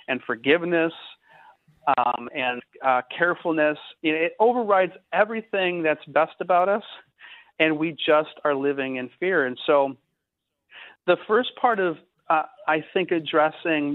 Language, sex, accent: English, male, American